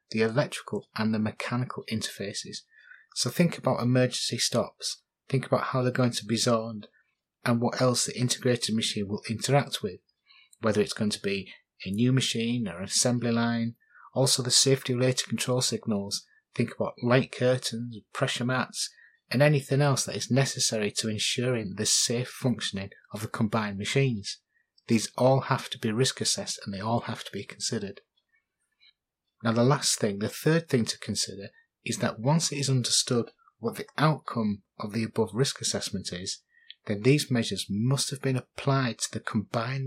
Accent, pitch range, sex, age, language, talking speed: British, 110-135 Hz, male, 30-49, English, 175 wpm